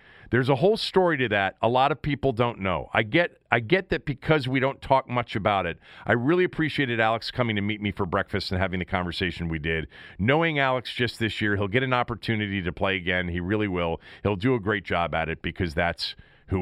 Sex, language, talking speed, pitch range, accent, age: male, English, 235 wpm, 100-135 Hz, American, 40-59